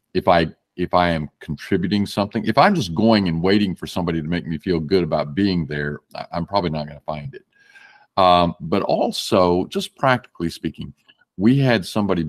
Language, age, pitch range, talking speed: English, 50-69, 85-110 Hz, 190 wpm